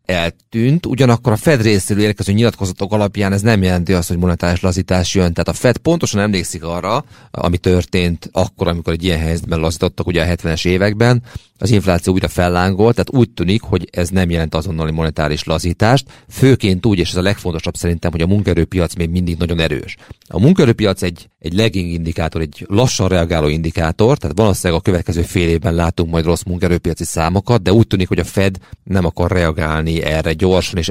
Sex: male